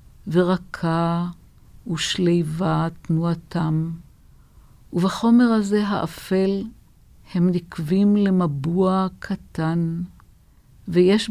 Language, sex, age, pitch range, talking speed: Hebrew, female, 50-69, 160-190 Hz, 60 wpm